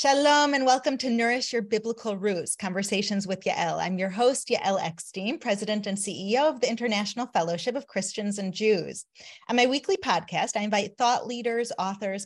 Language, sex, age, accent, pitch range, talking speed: English, female, 30-49, American, 195-245 Hz, 175 wpm